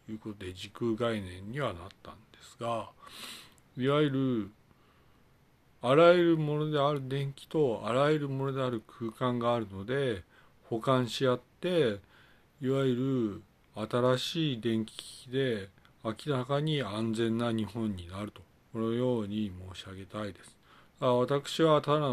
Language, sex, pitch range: Japanese, male, 105-135 Hz